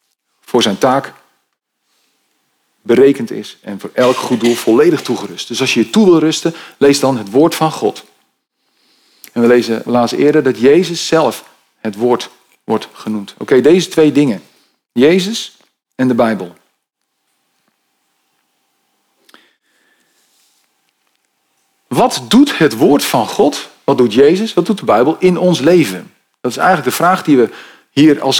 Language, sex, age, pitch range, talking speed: Dutch, male, 40-59, 120-160 Hz, 150 wpm